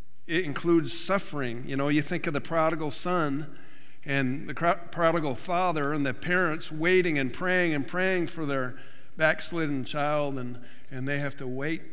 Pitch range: 140-175 Hz